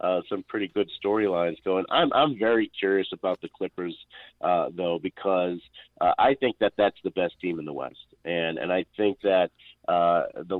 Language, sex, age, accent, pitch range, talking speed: English, male, 50-69, American, 95-135 Hz, 190 wpm